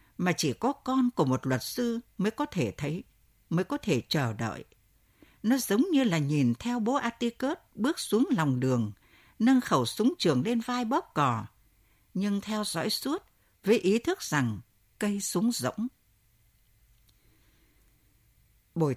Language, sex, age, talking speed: Vietnamese, female, 60-79, 155 wpm